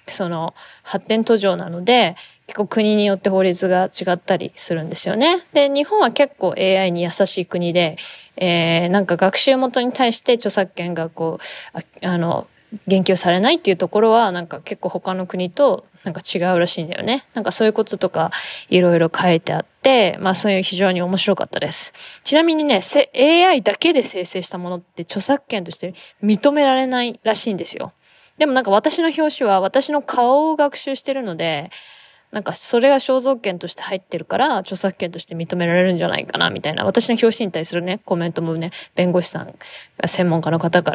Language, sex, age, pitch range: Japanese, female, 20-39, 180-255 Hz